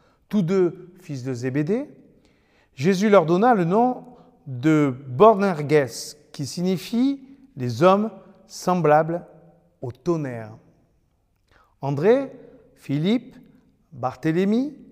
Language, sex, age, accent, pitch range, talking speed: French, male, 50-69, French, 140-215 Hz, 95 wpm